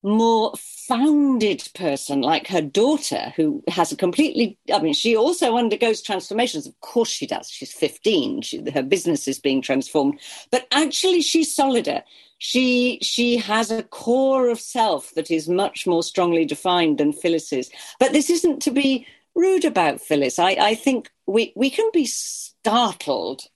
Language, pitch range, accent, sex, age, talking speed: English, 180-300 Hz, British, female, 50-69, 160 wpm